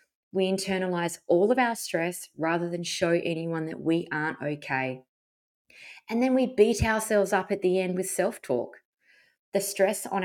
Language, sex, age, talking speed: English, female, 20-39, 165 wpm